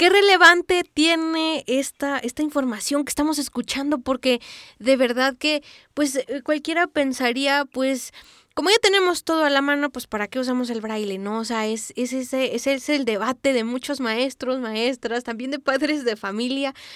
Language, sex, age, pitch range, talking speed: Spanish, female, 20-39, 240-295 Hz, 175 wpm